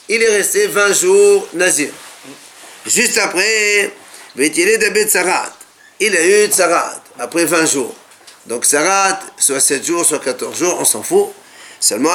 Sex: male